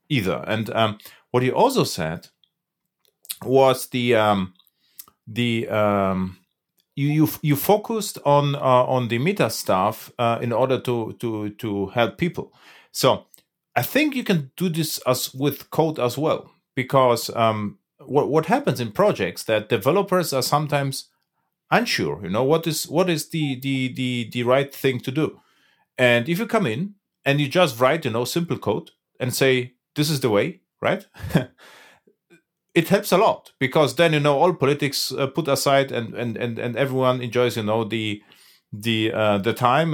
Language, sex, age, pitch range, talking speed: English, male, 40-59, 115-150 Hz, 170 wpm